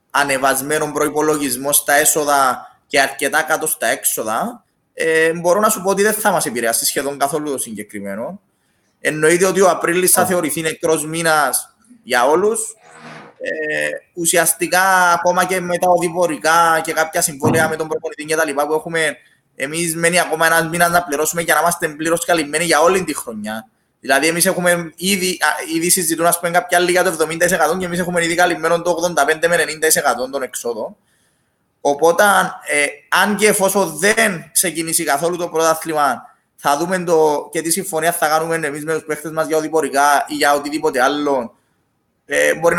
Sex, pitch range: male, 145-175 Hz